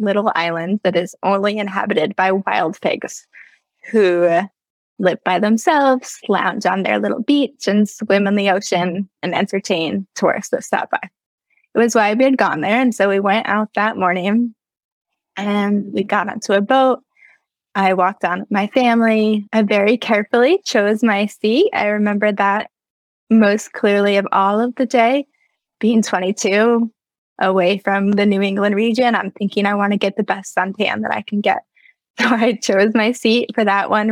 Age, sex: 10-29, female